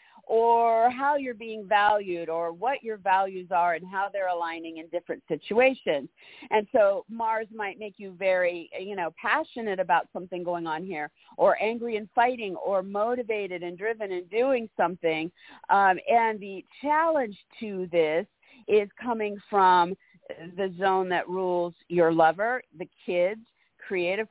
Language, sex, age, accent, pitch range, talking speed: English, female, 50-69, American, 175-225 Hz, 150 wpm